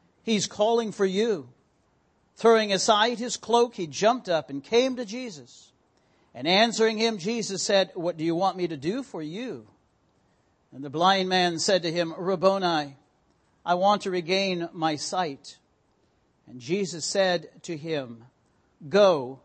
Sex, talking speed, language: male, 150 wpm, English